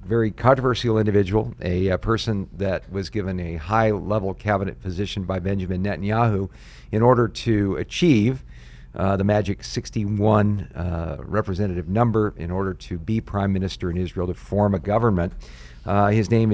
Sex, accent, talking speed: male, American, 150 wpm